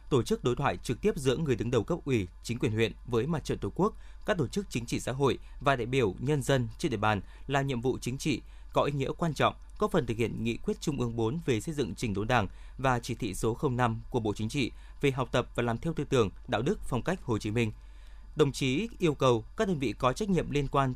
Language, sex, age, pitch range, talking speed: Vietnamese, male, 20-39, 115-160 Hz, 275 wpm